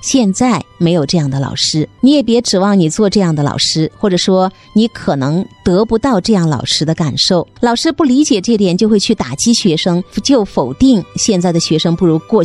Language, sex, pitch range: Chinese, female, 170-220 Hz